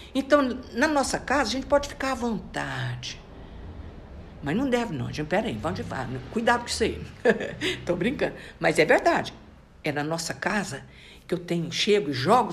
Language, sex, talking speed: Portuguese, female, 175 wpm